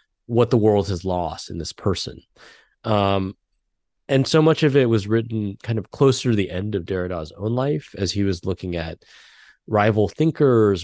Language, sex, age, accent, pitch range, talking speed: English, male, 30-49, American, 95-120 Hz, 185 wpm